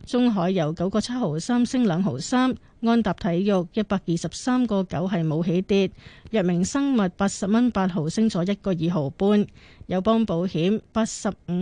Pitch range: 175-225 Hz